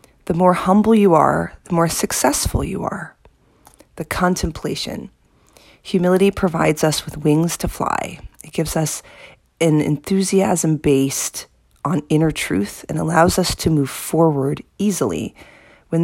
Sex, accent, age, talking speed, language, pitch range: female, American, 40-59, 135 wpm, English, 150-180 Hz